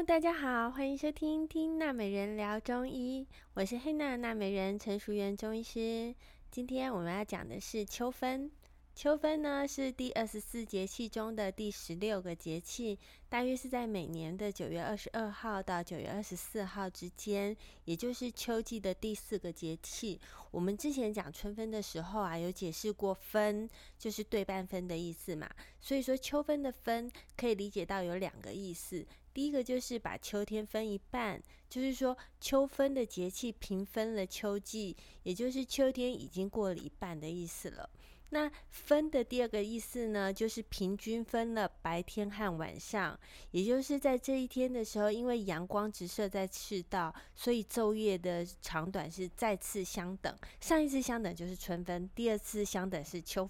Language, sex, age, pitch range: Chinese, female, 20-39, 185-245 Hz